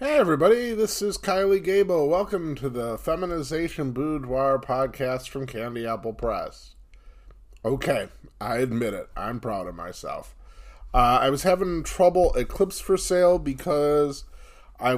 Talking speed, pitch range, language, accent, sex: 140 wpm, 105-150 Hz, English, American, male